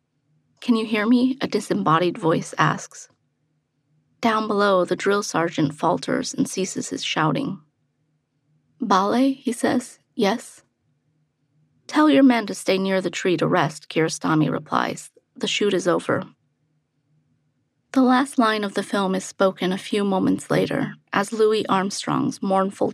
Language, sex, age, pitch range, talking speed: English, female, 30-49, 150-215 Hz, 140 wpm